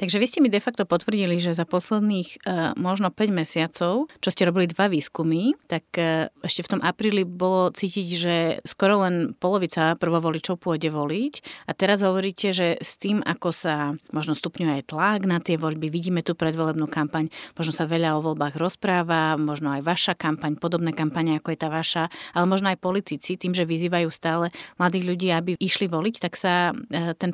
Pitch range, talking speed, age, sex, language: 165-195 Hz, 190 wpm, 30-49, female, Slovak